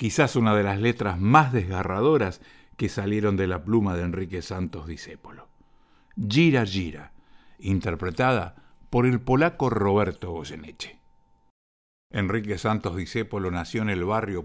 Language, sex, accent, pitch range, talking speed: Spanish, male, Argentinian, 95-120 Hz, 130 wpm